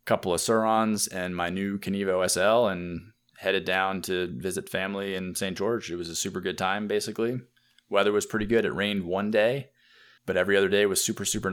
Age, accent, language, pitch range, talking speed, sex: 20-39, American, English, 85-105 Hz, 205 wpm, male